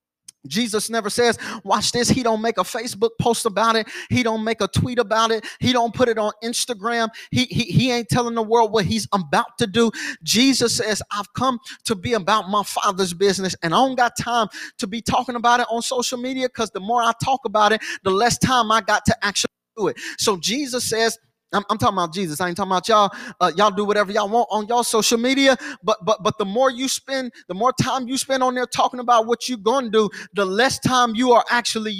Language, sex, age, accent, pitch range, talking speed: English, male, 30-49, American, 210-250 Hz, 240 wpm